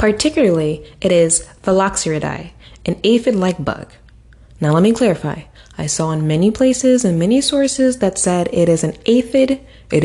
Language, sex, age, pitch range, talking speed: English, female, 20-39, 150-215 Hz, 155 wpm